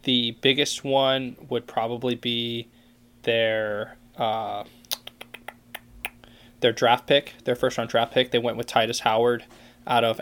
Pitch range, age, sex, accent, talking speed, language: 115-125 Hz, 20-39, male, American, 130 wpm, English